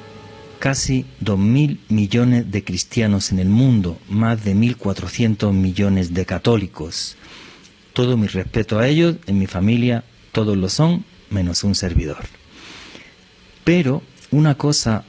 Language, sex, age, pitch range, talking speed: Spanish, male, 50-69, 95-120 Hz, 125 wpm